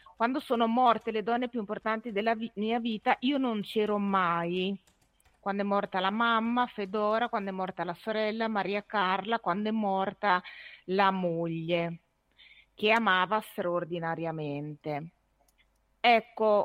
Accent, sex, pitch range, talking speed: native, female, 195-240 Hz, 135 wpm